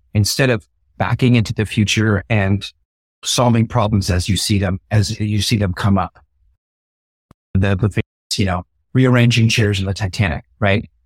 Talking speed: 150 wpm